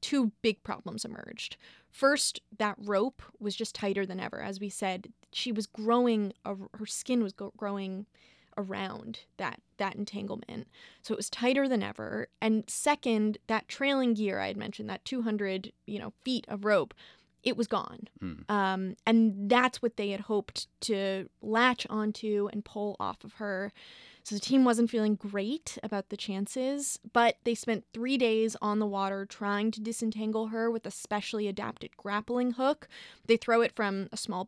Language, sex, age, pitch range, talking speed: English, female, 20-39, 205-235 Hz, 170 wpm